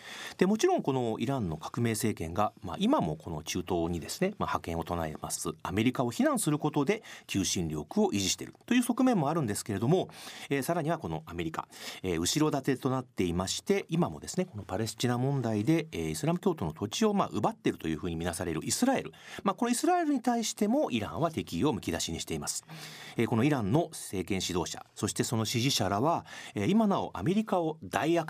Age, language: 40-59, Japanese